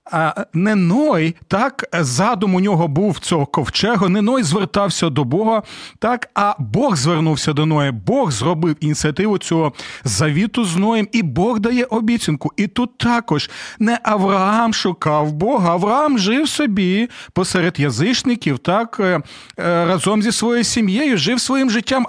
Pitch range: 155-225 Hz